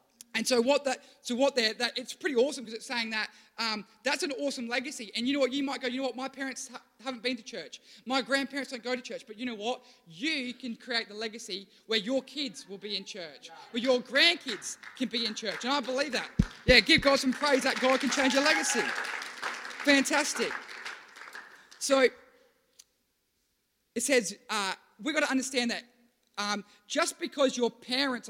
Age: 20-39